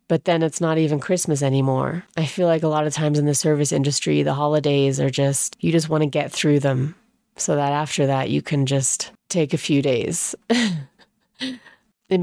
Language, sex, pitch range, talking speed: English, female, 145-175 Hz, 200 wpm